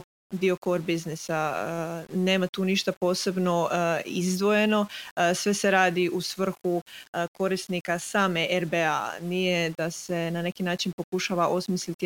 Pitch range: 175-195 Hz